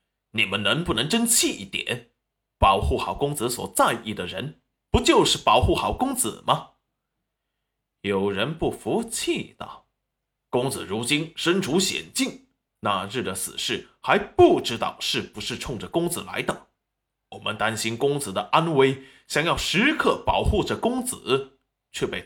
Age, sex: 20-39, male